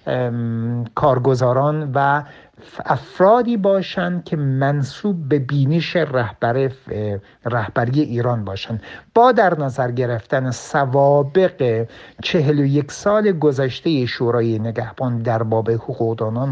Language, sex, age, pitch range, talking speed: Persian, male, 60-79, 115-150 Hz, 85 wpm